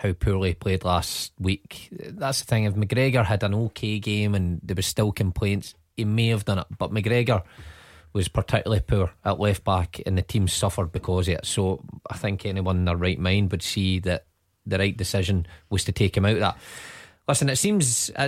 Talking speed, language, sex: 210 wpm, English, male